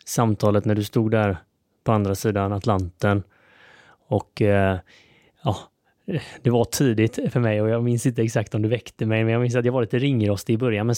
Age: 20-39